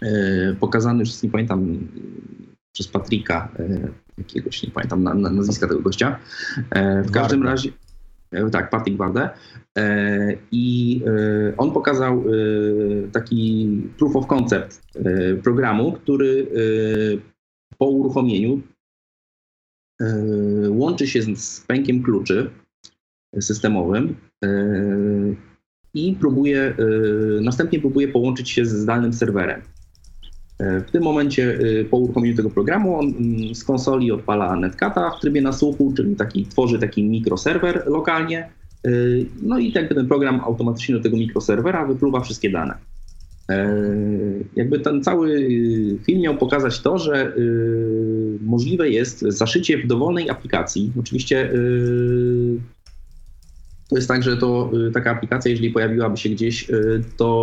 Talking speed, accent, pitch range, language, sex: 110 wpm, native, 100-125 Hz, Polish, male